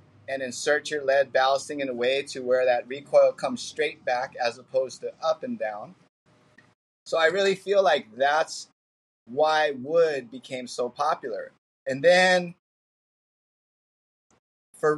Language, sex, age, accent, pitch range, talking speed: English, male, 30-49, American, 135-180 Hz, 140 wpm